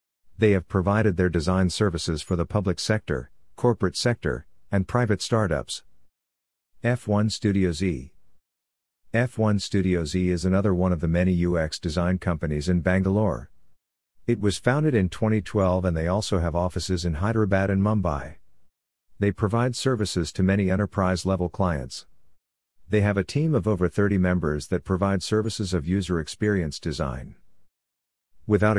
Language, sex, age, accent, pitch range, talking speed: English, male, 50-69, American, 85-105 Hz, 145 wpm